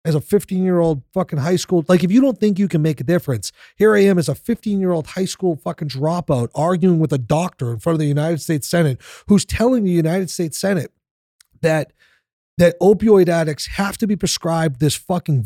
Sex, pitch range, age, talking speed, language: male, 145-180 Hz, 40-59, 205 wpm, English